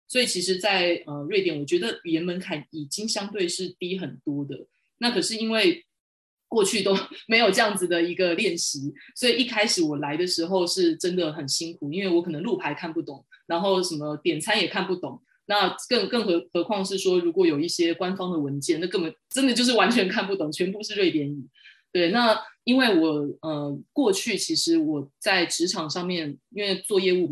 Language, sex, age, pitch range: English, female, 20-39, 155-215 Hz